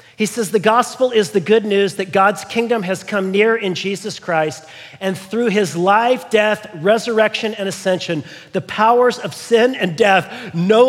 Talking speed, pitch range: 175 wpm, 155-220 Hz